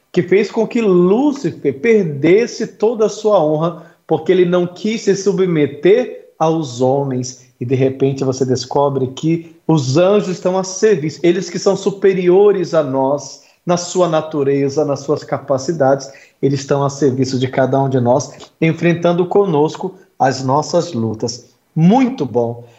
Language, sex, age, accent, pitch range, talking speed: Portuguese, male, 50-69, Brazilian, 135-195 Hz, 150 wpm